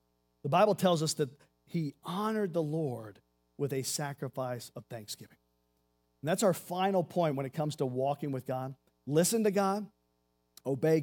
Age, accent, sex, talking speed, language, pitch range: 50-69, American, male, 165 wpm, English, 110-165 Hz